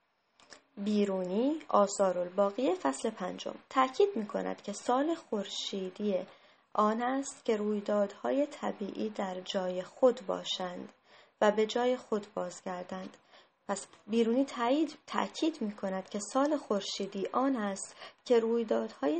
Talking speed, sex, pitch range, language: 115 wpm, female, 195-255 Hz, Persian